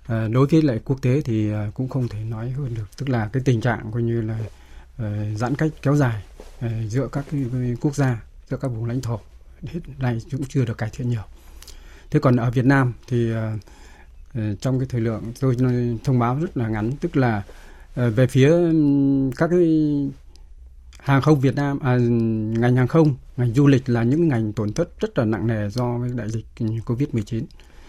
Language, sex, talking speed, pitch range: Vietnamese, male, 190 wpm, 110-140 Hz